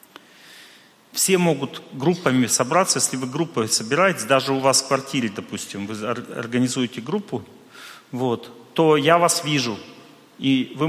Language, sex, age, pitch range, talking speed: Russian, male, 40-59, 115-145 Hz, 125 wpm